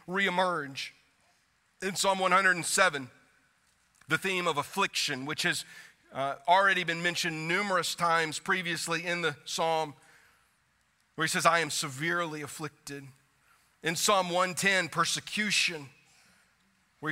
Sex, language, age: male, English, 40-59